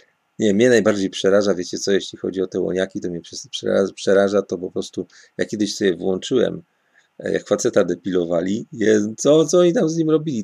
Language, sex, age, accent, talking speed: Polish, male, 40-59, native, 185 wpm